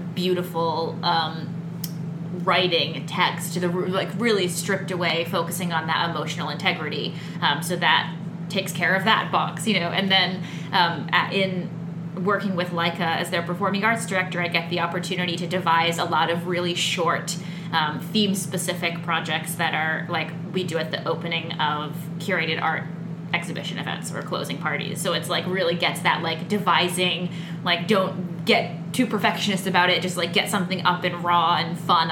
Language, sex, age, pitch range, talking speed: English, female, 20-39, 165-180 Hz, 175 wpm